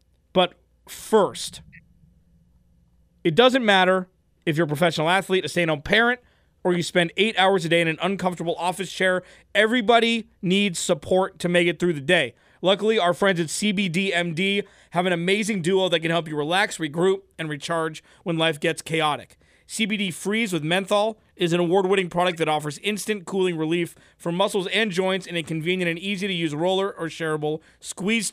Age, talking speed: 30-49, 170 wpm